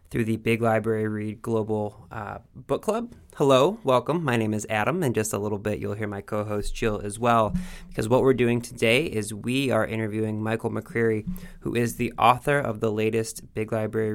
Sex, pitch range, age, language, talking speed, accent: male, 110-120 Hz, 20-39, English, 200 wpm, American